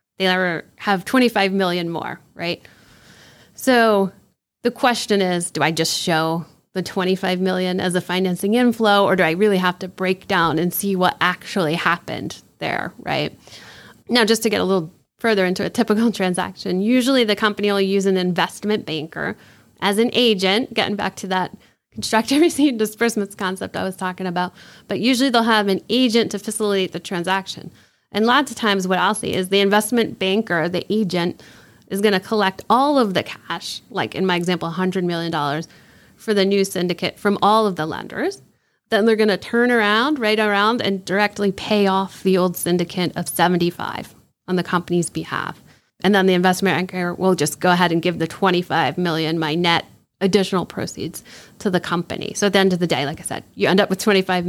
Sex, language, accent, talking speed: female, English, American, 195 wpm